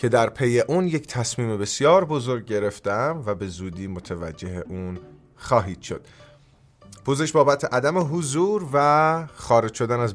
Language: Persian